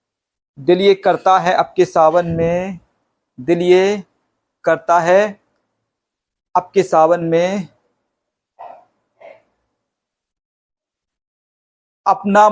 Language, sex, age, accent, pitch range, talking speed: Hindi, male, 50-69, native, 165-195 Hz, 60 wpm